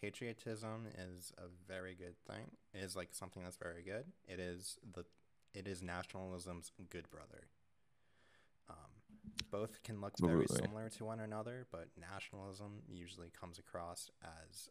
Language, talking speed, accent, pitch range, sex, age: English, 145 wpm, American, 85-100 Hz, male, 20-39